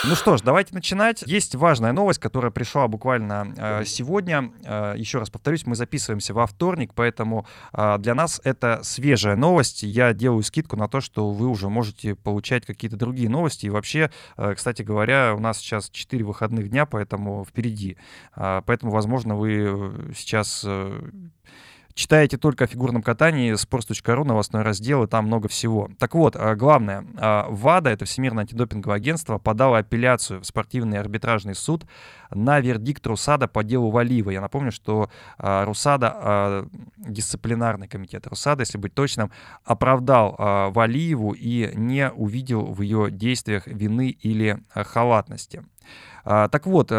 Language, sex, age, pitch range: Russian, male, 20-39, 105-130 Hz